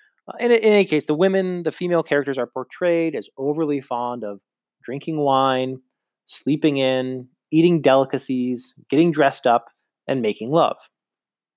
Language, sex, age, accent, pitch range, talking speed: English, male, 30-49, American, 120-145 Hz, 135 wpm